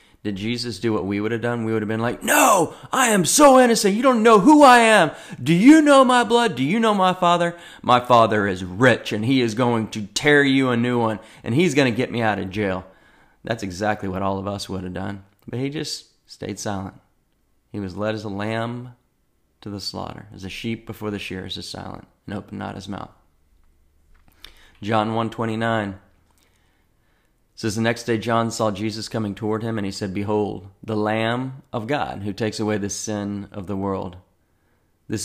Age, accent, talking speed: 30-49, American, 210 wpm